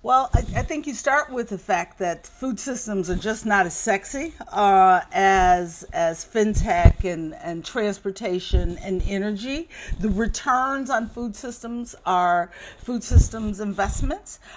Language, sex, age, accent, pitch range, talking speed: English, female, 50-69, American, 175-230 Hz, 145 wpm